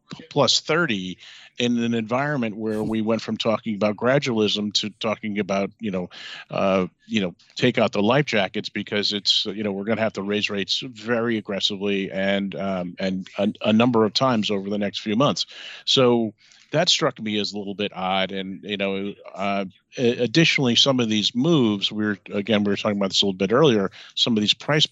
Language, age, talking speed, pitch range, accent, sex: English, 40-59, 200 wpm, 100-125 Hz, American, male